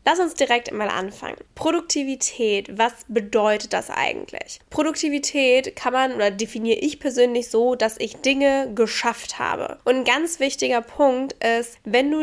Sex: female